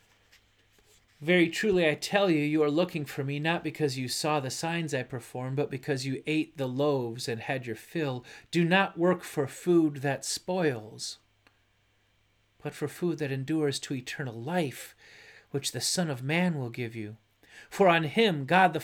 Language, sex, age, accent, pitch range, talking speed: English, male, 40-59, American, 115-160 Hz, 180 wpm